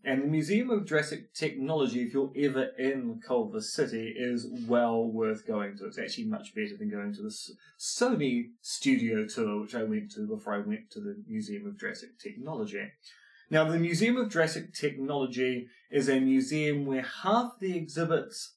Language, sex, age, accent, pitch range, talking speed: English, male, 20-39, British, 130-220 Hz, 175 wpm